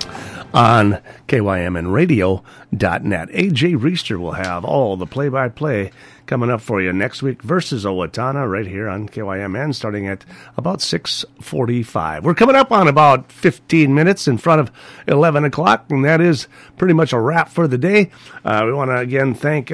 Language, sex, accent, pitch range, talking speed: English, male, American, 110-165 Hz, 160 wpm